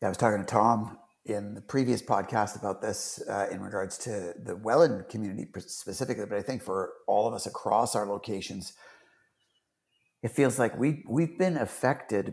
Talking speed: 180 wpm